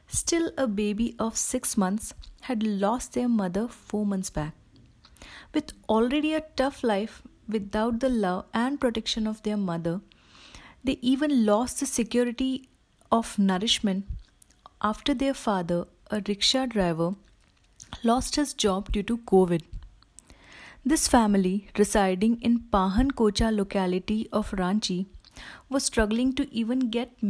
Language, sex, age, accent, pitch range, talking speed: Hindi, female, 30-49, native, 195-245 Hz, 130 wpm